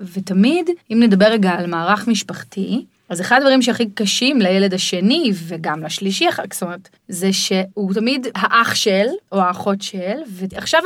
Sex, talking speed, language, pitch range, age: female, 155 wpm, Hebrew, 190-255 Hz, 30-49